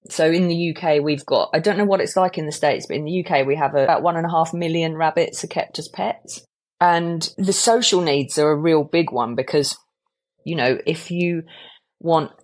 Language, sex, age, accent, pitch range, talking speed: English, female, 30-49, British, 135-170 Hz, 225 wpm